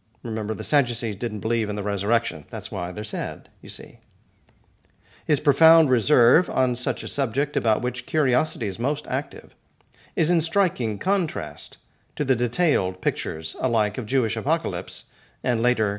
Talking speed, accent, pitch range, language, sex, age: 155 wpm, American, 105-145 Hz, English, male, 50-69